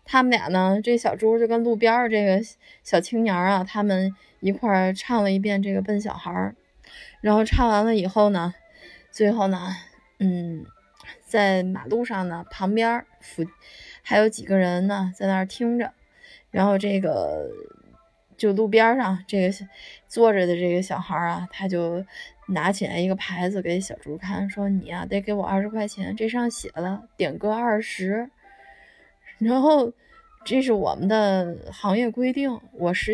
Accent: native